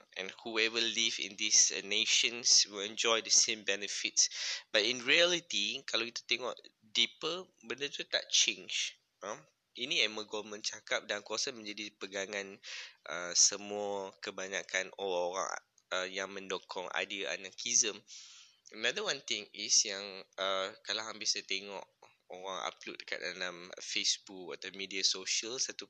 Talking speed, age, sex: 140 wpm, 20-39, male